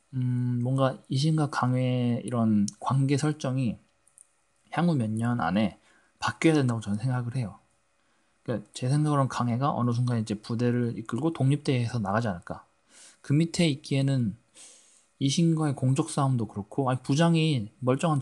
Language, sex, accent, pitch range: Korean, male, native, 115-140 Hz